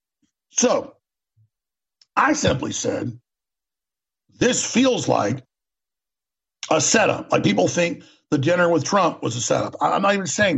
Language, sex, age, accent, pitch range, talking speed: English, male, 50-69, American, 150-235 Hz, 130 wpm